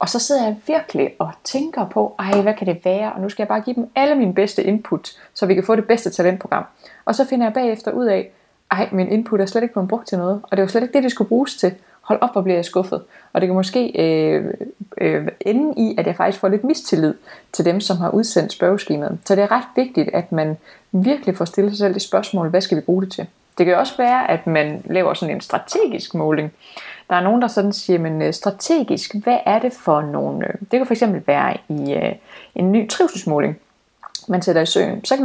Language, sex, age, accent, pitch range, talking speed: Danish, female, 20-39, native, 180-235 Hz, 245 wpm